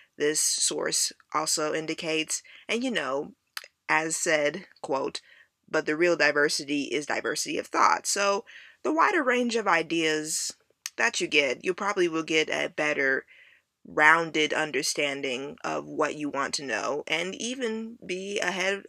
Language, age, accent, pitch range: English, 20-39, American, 160-225 Hz